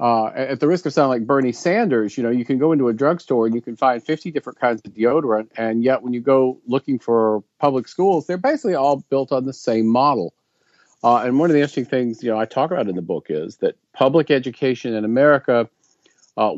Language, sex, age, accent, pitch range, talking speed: English, male, 40-59, American, 110-135 Hz, 235 wpm